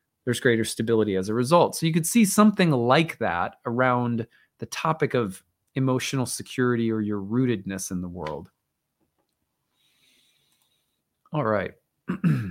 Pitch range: 115-150 Hz